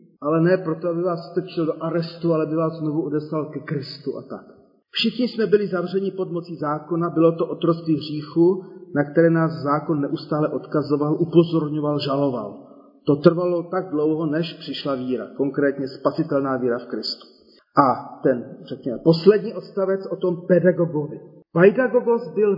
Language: Czech